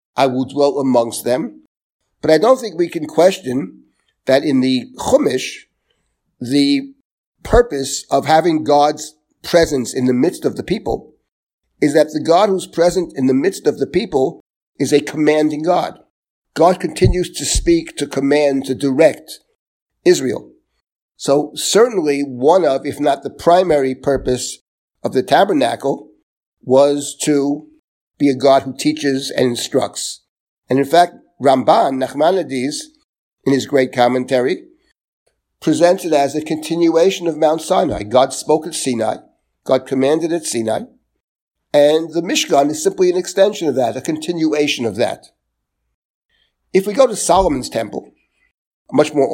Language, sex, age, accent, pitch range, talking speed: English, male, 50-69, American, 130-170 Hz, 145 wpm